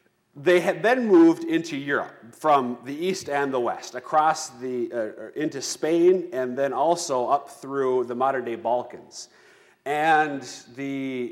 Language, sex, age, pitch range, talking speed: English, male, 30-49, 125-180 Hz, 145 wpm